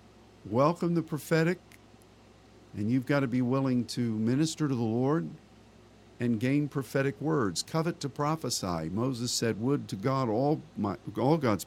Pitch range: 105-140 Hz